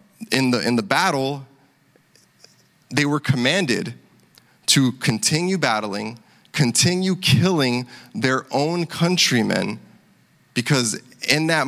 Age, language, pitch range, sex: 20-39, English, 115-150 Hz, male